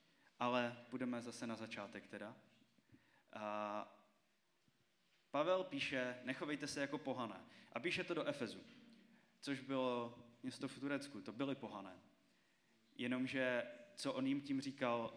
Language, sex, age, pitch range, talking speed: Czech, male, 20-39, 115-140 Hz, 125 wpm